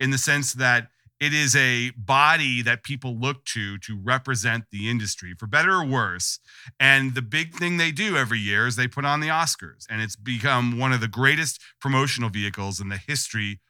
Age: 40-59